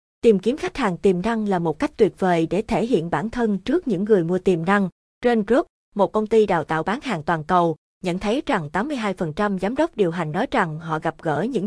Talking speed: 240 wpm